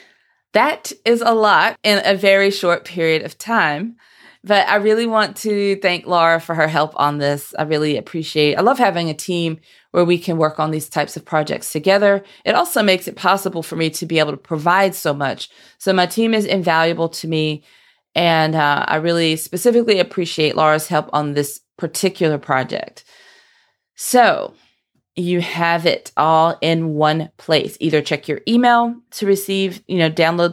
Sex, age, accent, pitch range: female, 30-49, American, 160-195 Hz